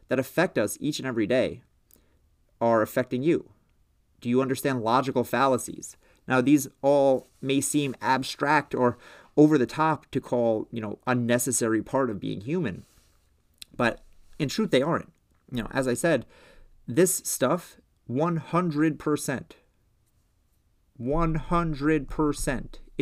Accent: American